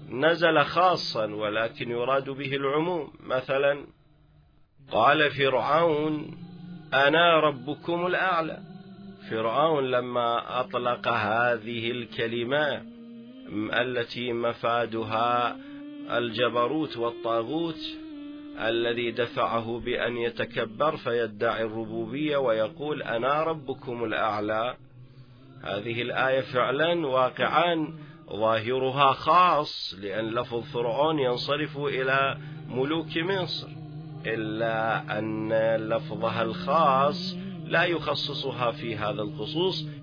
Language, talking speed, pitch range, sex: Arabic, 80 wpm, 120-155 Hz, male